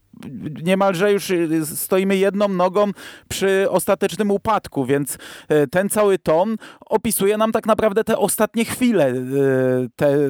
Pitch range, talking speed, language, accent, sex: 155-205 Hz, 115 wpm, Polish, native, male